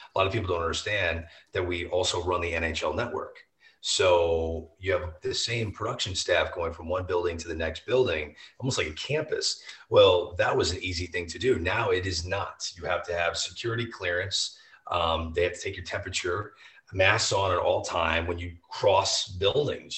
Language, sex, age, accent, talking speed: English, male, 30-49, American, 200 wpm